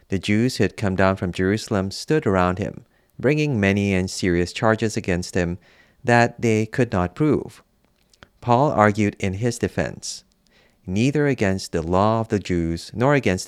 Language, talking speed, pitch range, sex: English, 165 wpm, 90-115 Hz, male